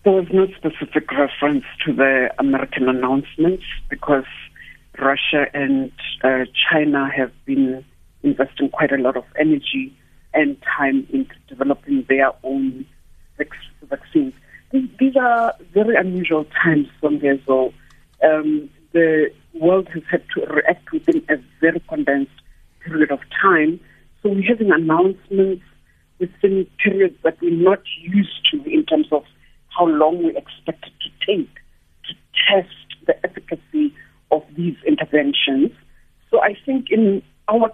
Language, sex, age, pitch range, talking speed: English, female, 60-79, 150-215 Hz, 135 wpm